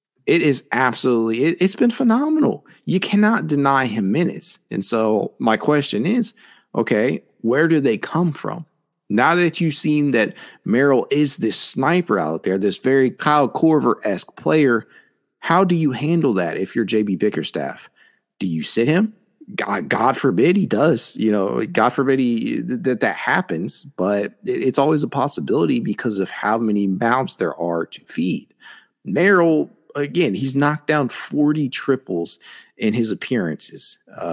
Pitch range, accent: 110-165 Hz, American